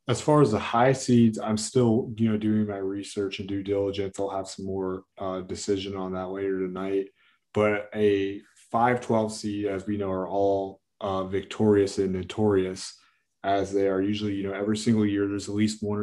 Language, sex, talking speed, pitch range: English, male, 195 wpm, 100-110 Hz